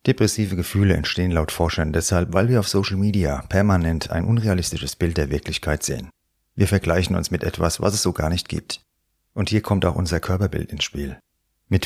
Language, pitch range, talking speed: German, 85-100 Hz, 190 wpm